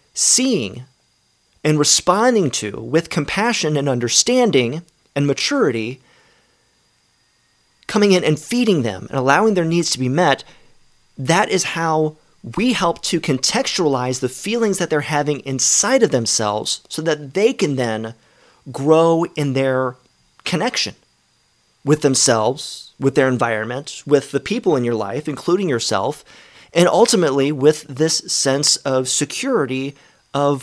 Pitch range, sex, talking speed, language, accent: 125-160 Hz, male, 130 wpm, English, American